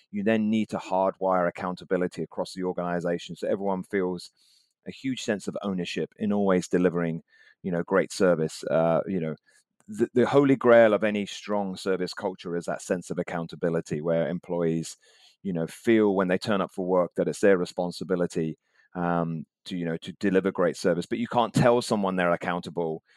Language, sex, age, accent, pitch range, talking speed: English, male, 30-49, British, 85-100 Hz, 185 wpm